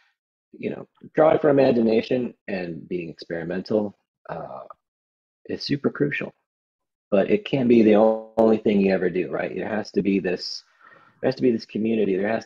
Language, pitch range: English, 90-115 Hz